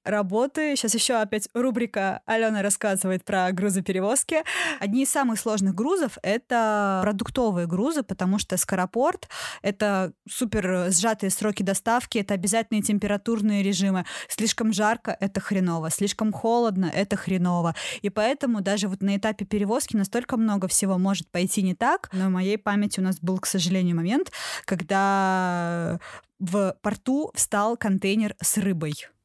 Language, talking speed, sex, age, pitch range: Russian, 140 wpm, female, 20-39, 190-225 Hz